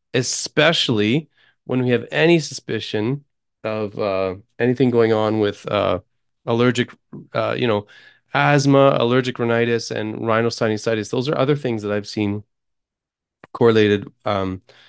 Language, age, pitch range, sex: English, 30-49, 100-120 Hz, male